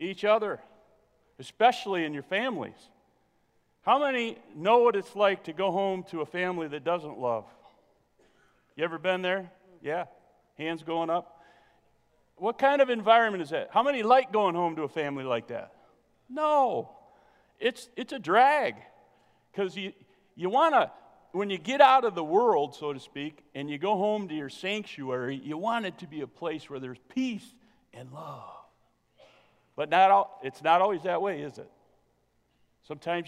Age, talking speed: 40-59, 170 wpm